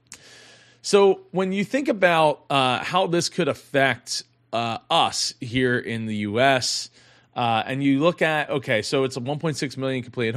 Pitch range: 115-145 Hz